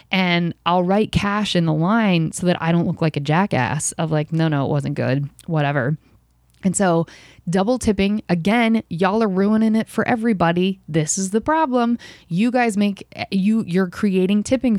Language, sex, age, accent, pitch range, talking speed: English, female, 20-39, American, 160-215 Hz, 185 wpm